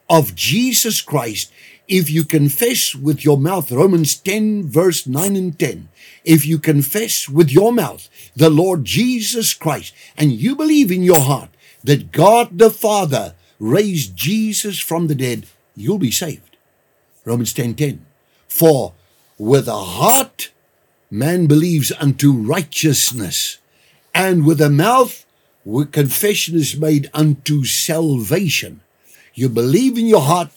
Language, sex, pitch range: English, male, 140-185 Hz